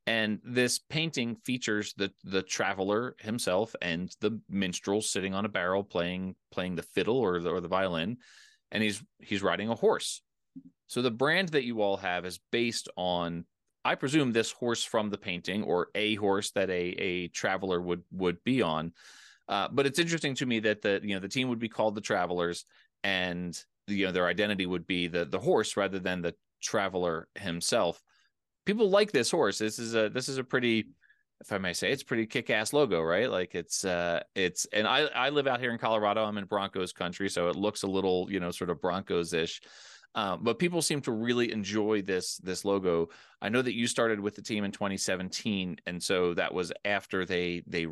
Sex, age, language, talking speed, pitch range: male, 30-49, English, 205 wpm, 90-115 Hz